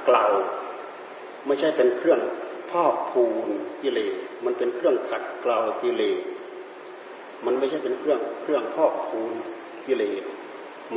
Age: 40-59